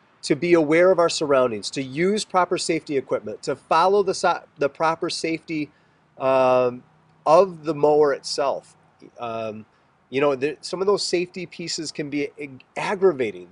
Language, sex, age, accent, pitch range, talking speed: English, male, 30-49, American, 125-160 Hz, 145 wpm